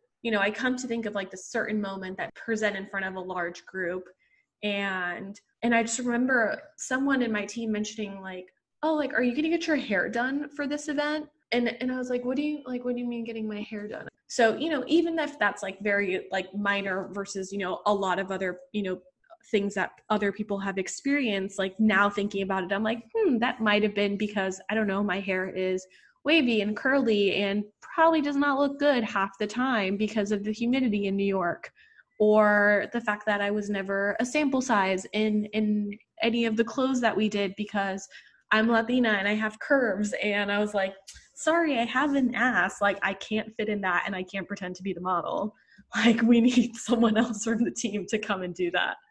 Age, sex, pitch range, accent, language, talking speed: 20-39, female, 195-245 Hz, American, English, 225 wpm